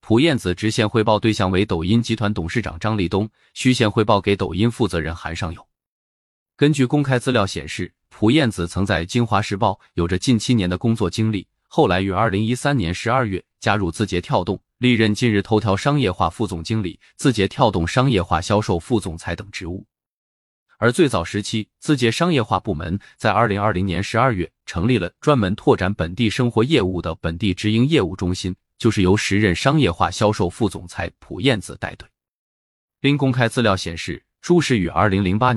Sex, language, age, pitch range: male, Chinese, 20-39, 90-115 Hz